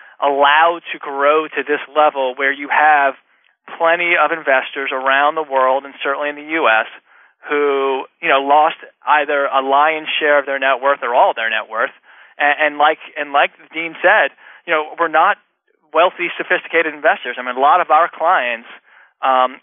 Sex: male